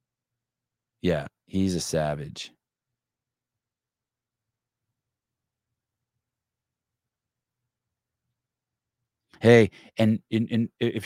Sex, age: male, 30-49